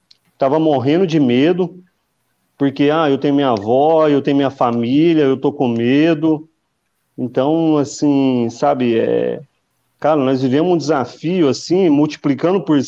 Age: 40-59